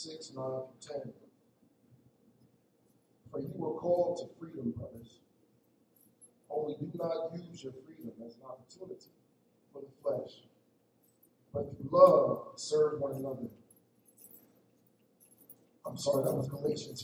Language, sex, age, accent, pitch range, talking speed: English, male, 50-69, American, 130-175 Hz, 125 wpm